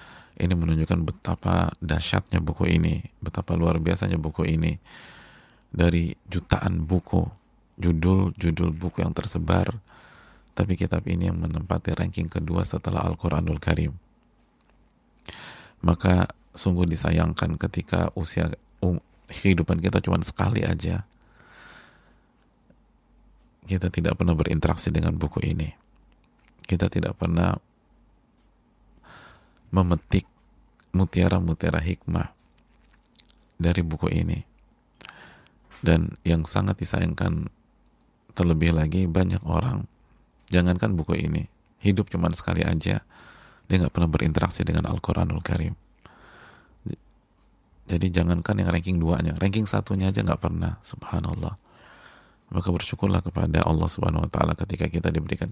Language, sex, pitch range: Indonesian, male, 80-95 Hz